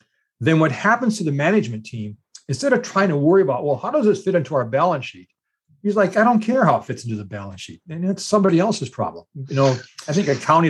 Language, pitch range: English, 130-190 Hz